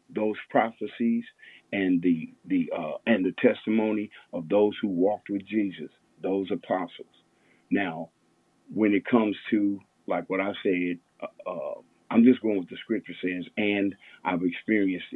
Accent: American